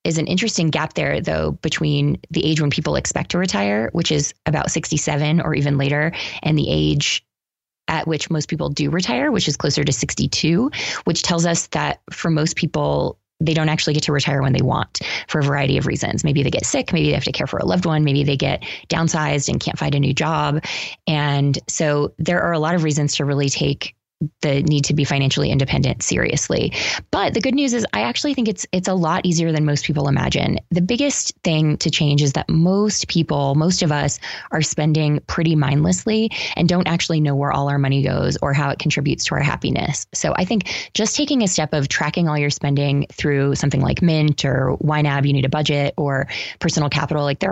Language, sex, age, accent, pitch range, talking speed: English, female, 20-39, American, 140-165 Hz, 220 wpm